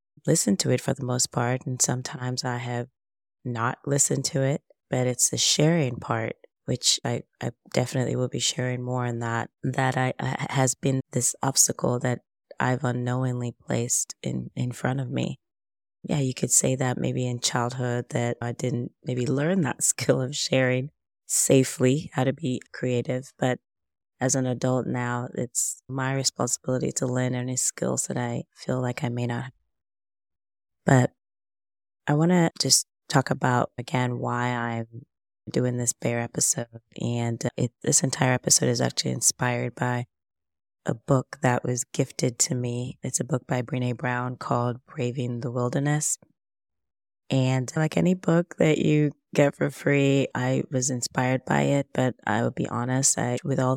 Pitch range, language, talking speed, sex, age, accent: 120-135 Hz, English, 165 wpm, female, 20-39, American